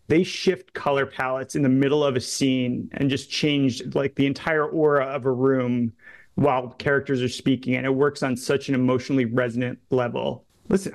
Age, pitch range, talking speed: 30-49, 130-155 Hz, 185 wpm